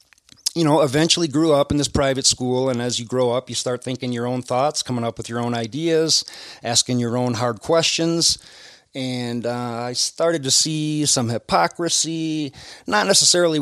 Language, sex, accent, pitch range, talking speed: English, male, American, 120-145 Hz, 180 wpm